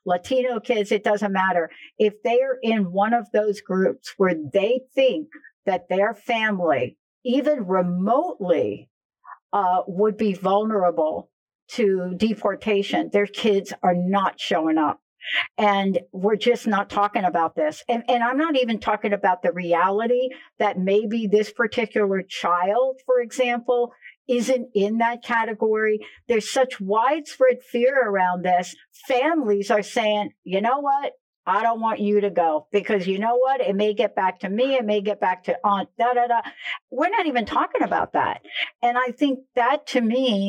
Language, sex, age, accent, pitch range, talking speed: English, female, 60-79, American, 195-240 Hz, 160 wpm